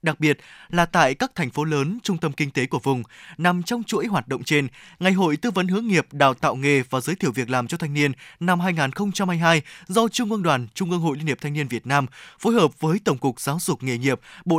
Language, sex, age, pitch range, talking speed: Vietnamese, male, 20-39, 140-190 Hz, 255 wpm